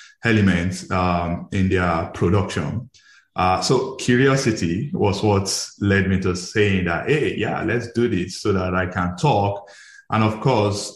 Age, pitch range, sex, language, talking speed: 20-39, 95-110 Hz, male, English, 150 wpm